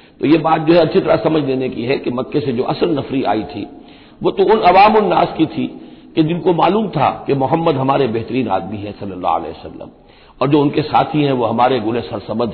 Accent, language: native, Hindi